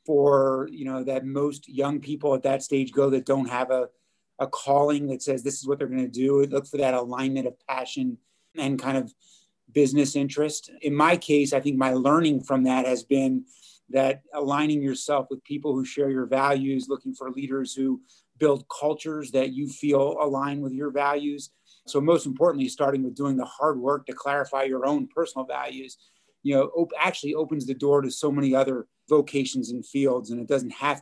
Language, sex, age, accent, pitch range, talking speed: English, male, 30-49, American, 135-150 Hz, 200 wpm